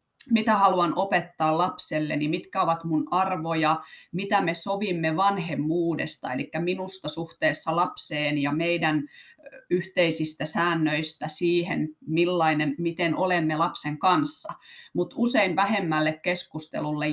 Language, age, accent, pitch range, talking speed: Finnish, 30-49, native, 155-185 Hz, 110 wpm